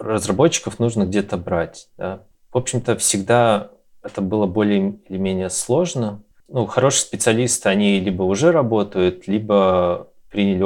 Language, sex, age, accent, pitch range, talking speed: Russian, male, 20-39, native, 95-125 Hz, 130 wpm